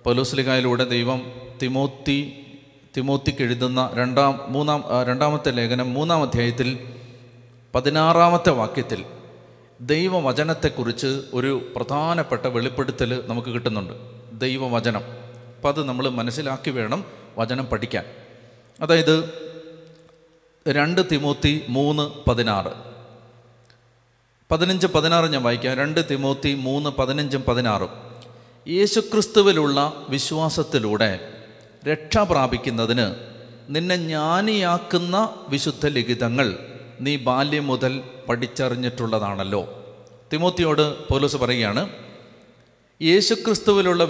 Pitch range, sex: 125-160 Hz, male